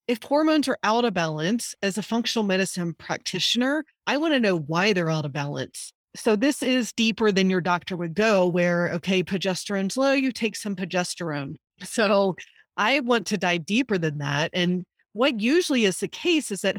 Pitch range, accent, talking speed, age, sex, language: 175-230 Hz, American, 190 wpm, 30-49, female, English